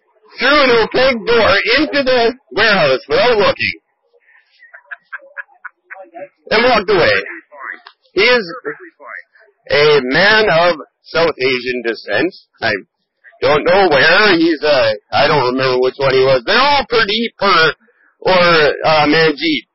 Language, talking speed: English, 125 wpm